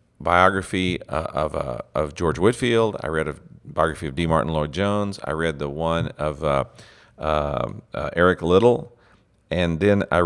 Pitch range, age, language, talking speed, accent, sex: 80-100 Hz, 50-69, English, 160 wpm, American, male